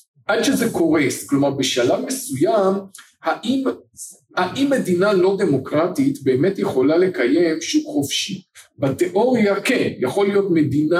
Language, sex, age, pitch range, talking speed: Hebrew, male, 50-69, 145-230 Hz, 115 wpm